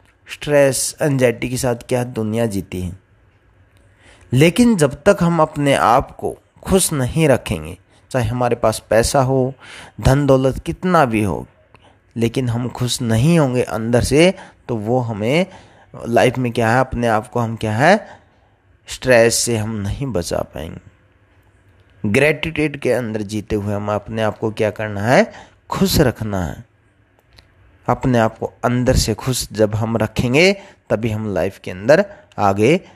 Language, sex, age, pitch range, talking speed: Hindi, male, 30-49, 100-135 Hz, 155 wpm